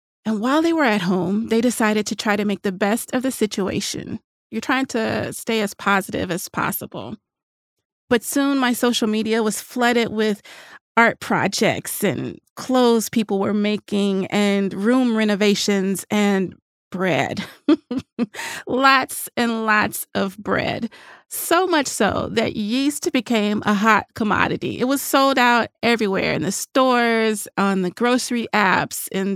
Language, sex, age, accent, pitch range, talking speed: English, female, 30-49, American, 200-245 Hz, 145 wpm